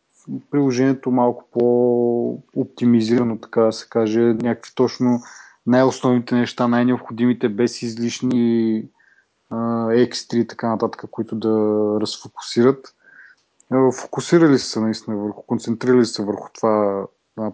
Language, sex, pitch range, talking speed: Bulgarian, male, 110-125 Hz, 105 wpm